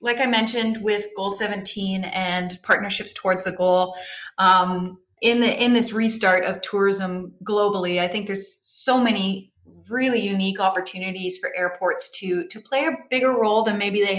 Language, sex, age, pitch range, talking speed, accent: English, female, 30-49, 165-195 Hz, 160 wpm, American